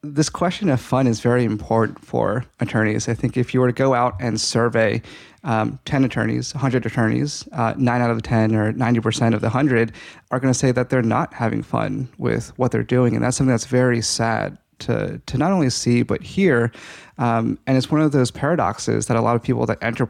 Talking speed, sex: 225 wpm, male